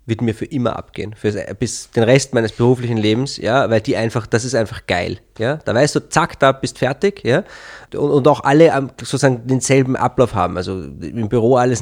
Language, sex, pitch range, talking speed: German, male, 115-150 Hz, 205 wpm